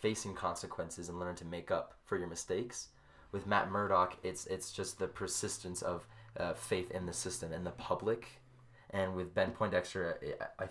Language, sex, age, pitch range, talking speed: English, male, 20-39, 90-110 Hz, 185 wpm